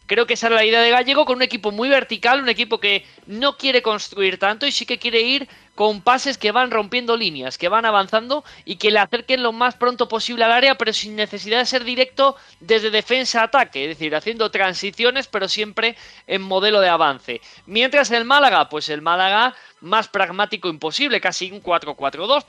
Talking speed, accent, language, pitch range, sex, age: 195 wpm, Spanish, Spanish, 180-240 Hz, male, 20-39